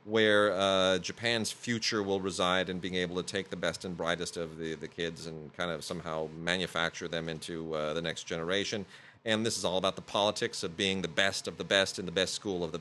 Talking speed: 235 wpm